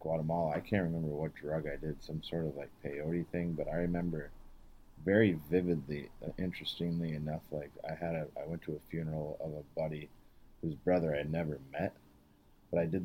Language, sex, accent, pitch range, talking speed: English, male, American, 75-90 Hz, 195 wpm